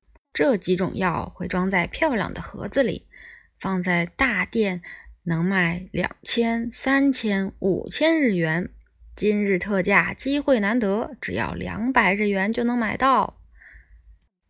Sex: female